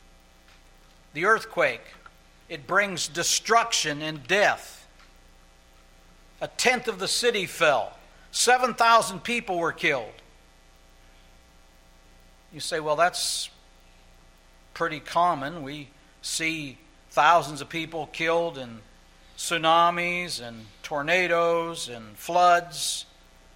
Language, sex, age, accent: English, male, 60-79, American